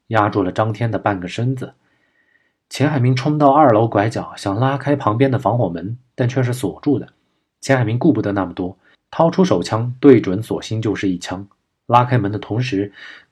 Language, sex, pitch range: Chinese, male, 100-135 Hz